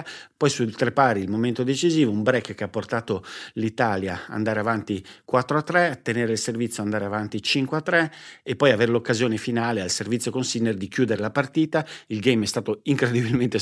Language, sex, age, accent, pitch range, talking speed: Italian, male, 50-69, native, 100-125 Hz, 175 wpm